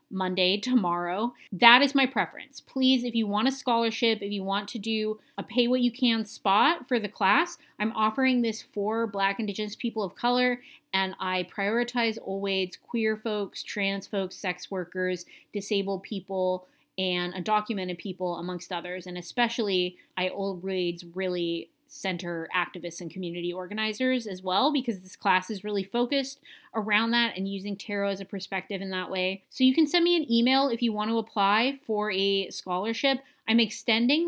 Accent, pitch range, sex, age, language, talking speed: American, 185-240 Hz, female, 30-49, English, 165 wpm